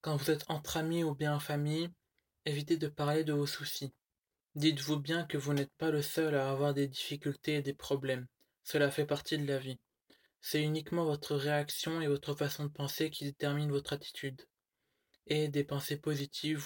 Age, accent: 20-39, French